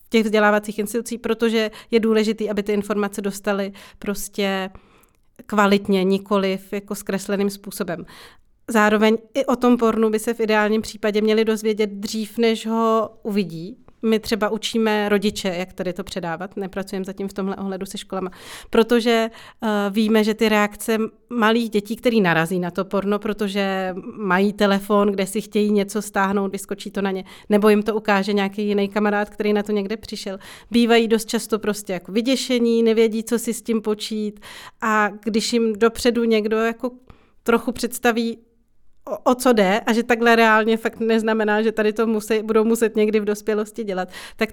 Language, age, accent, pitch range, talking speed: Czech, 30-49, native, 205-225 Hz, 165 wpm